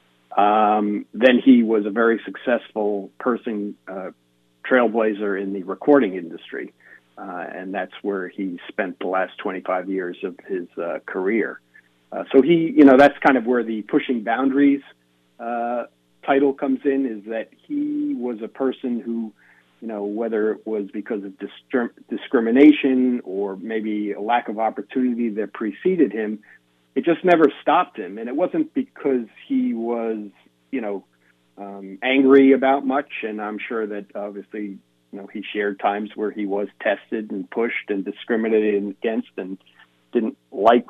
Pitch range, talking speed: 100-130 Hz, 160 wpm